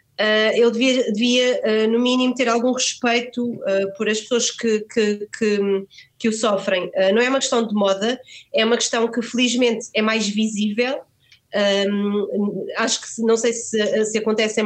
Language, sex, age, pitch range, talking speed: Portuguese, female, 20-39, 200-230 Hz, 145 wpm